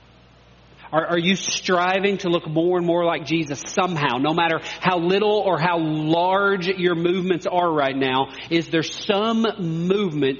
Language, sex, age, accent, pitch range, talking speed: English, male, 40-59, American, 145-185 Hz, 160 wpm